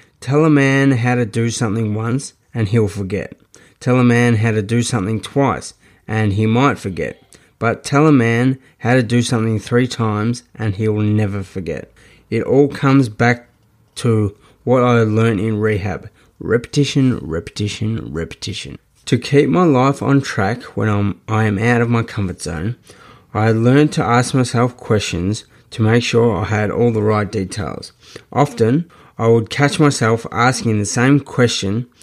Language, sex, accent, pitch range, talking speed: English, male, Australian, 110-130 Hz, 165 wpm